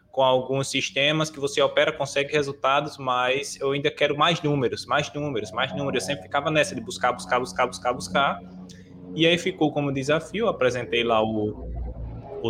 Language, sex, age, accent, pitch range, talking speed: Portuguese, male, 20-39, Brazilian, 125-165 Hz, 180 wpm